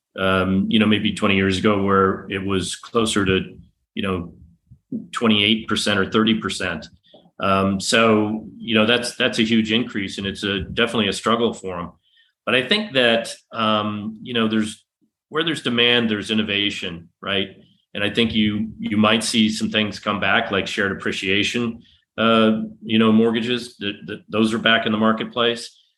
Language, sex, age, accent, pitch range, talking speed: English, male, 40-59, American, 100-115 Hz, 175 wpm